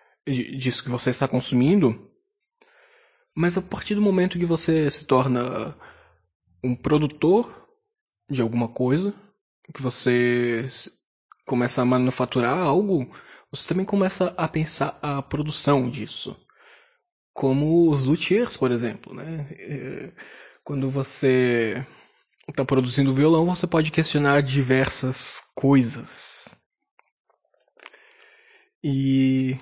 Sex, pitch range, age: male, 130-175 Hz, 20-39